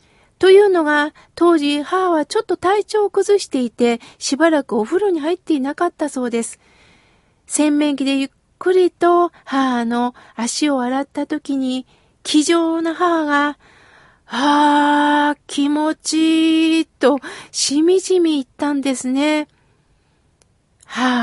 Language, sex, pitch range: Japanese, female, 245-340 Hz